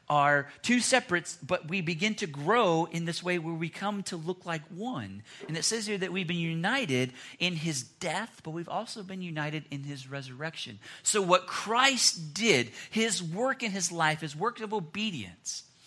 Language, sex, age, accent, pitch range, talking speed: English, male, 40-59, American, 140-185 Hz, 190 wpm